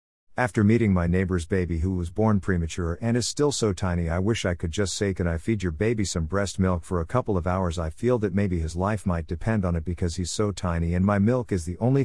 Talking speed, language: 265 wpm, English